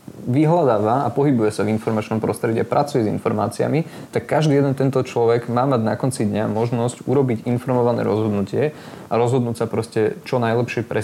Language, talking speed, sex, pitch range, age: Slovak, 170 wpm, male, 115-135 Hz, 20-39